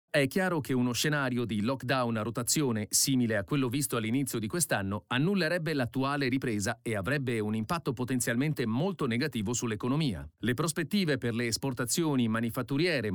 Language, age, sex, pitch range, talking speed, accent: Italian, 40-59, male, 120-155 Hz, 150 wpm, native